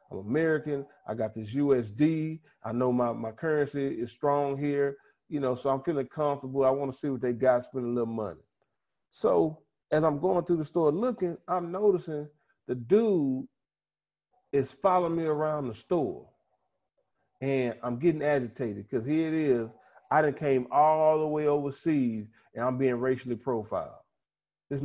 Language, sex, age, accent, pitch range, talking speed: English, male, 30-49, American, 120-160 Hz, 170 wpm